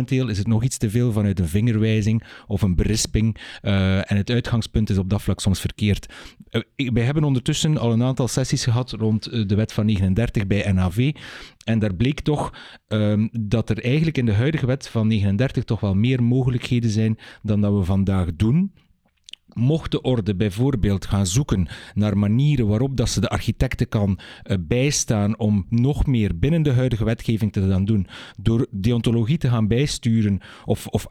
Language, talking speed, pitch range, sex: Dutch, 180 wpm, 105-130 Hz, male